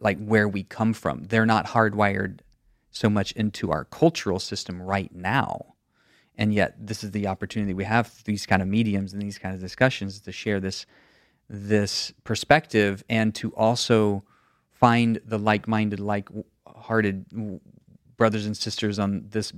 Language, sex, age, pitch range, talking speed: English, male, 30-49, 100-115 Hz, 155 wpm